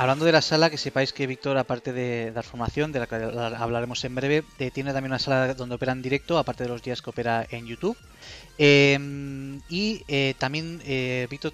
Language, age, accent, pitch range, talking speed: Spanish, 20-39, Spanish, 125-145 Hz, 210 wpm